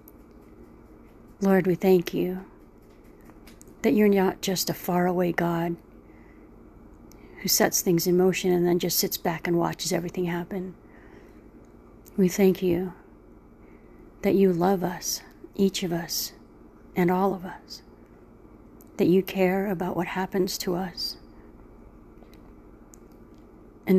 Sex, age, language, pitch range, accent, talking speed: female, 40-59, English, 170-190 Hz, American, 120 wpm